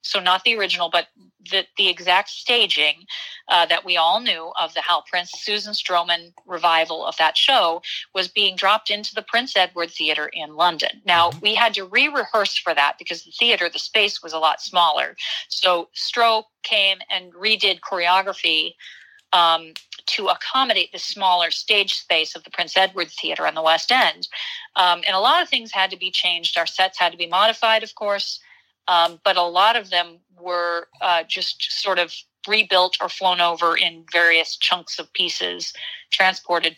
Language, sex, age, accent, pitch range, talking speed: English, female, 40-59, American, 170-200 Hz, 180 wpm